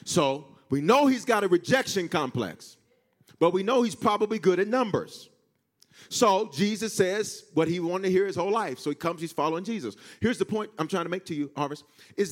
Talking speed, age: 215 wpm, 40-59